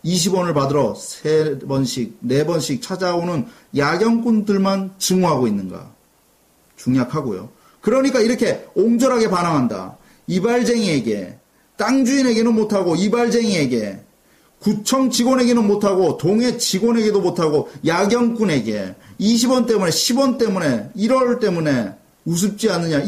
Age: 30-49